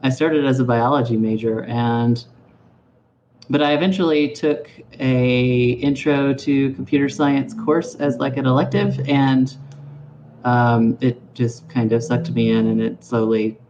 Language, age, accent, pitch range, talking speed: English, 30-49, American, 120-135 Hz, 145 wpm